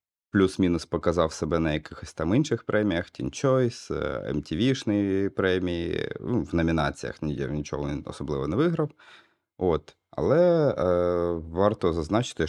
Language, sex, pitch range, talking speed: Ukrainian, male, 75-100 Hz, 110 wpm